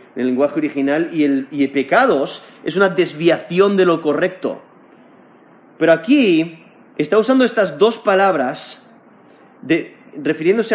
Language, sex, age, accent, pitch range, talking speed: Spanish, male, 30-49, Spanish, 150-210 Hz, 130 wpm